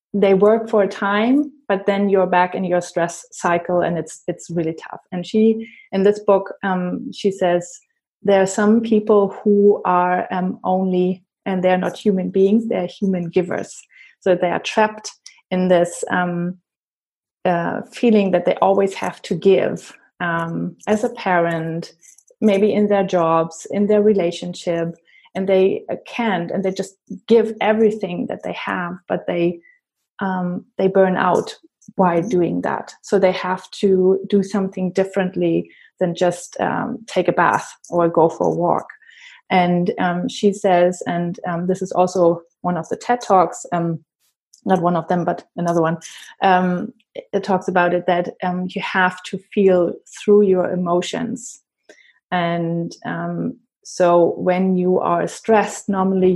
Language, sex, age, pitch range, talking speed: English, female, 20-39, 175-205 Hz, 160 wpm